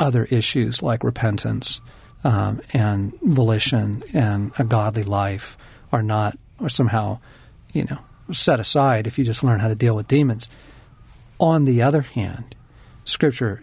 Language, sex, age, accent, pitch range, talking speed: English, male, 40-59, American, 115-140 Hz, 145 wpm